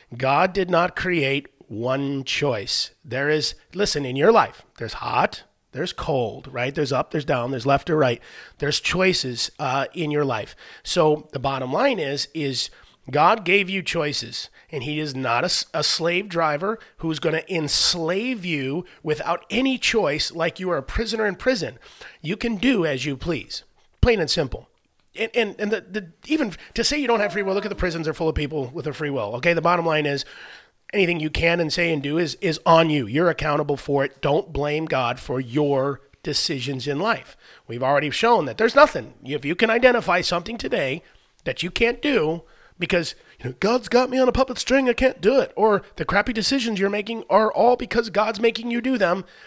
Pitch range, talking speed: 145-215 Hz, 205 wpm